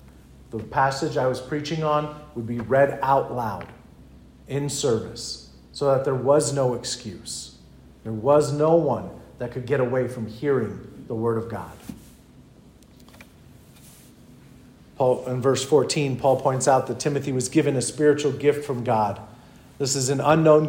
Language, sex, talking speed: English, male, 155 wpm